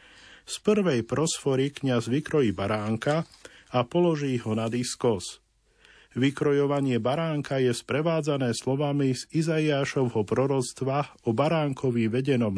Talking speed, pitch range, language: 105 wpm, 120-150 Hz, Slovak